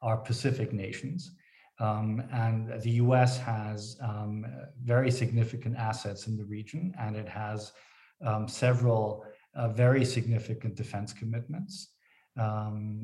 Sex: male